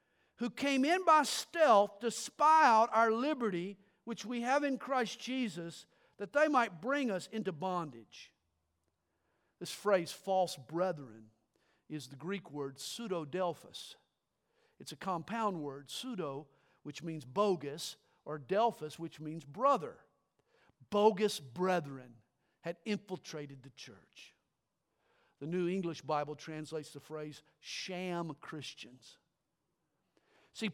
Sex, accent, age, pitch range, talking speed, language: male, American, 50-69, 160-255 Hz, 120 wpm, English